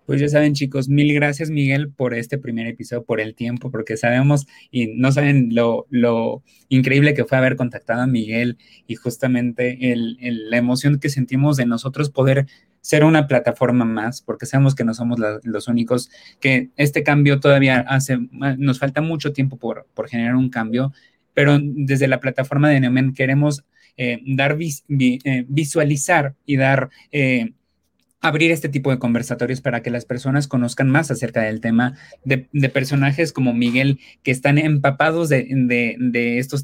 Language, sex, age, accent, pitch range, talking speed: Spanish, male, 20-39, Mexican, 120-140 Hz, 175 wpm